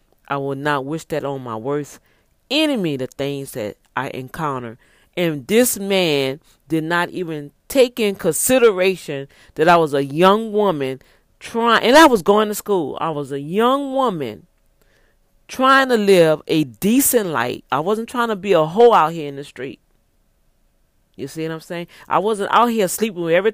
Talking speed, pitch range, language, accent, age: 180 wpm, 140-195 Hz, English, American, 40-59